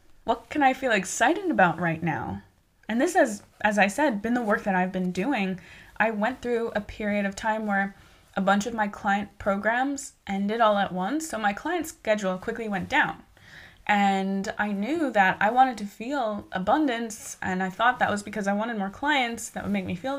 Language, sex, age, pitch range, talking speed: English, female, 20-39, 190-230 Hz, 210 wpm